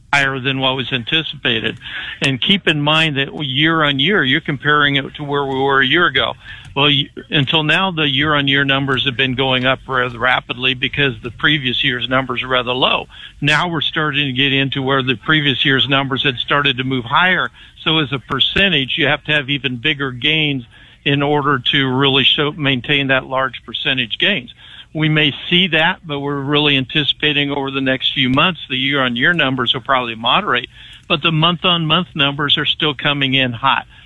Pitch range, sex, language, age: 130-155 Hz, male, English, 60-79